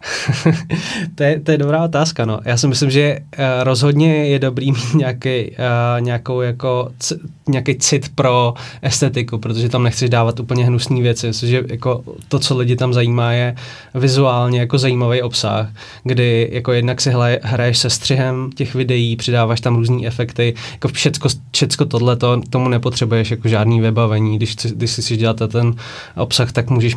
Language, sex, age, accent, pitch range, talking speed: Czech, male, 20-39, native, 115-125 Hz, 170 wpm